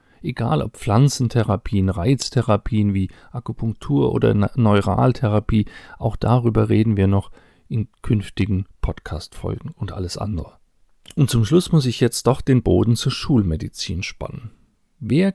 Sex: male